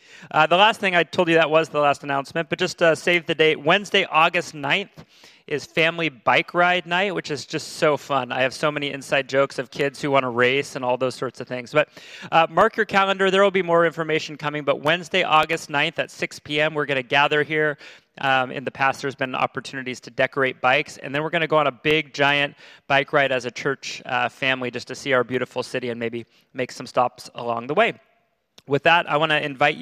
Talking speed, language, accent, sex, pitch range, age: 240 wpm, English, American, male, 130-155 Hz, 30-49